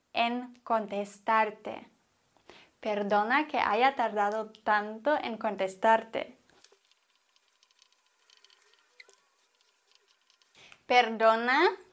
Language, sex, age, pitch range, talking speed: English, female, 20-39, 245-315 Hz, 50 wpm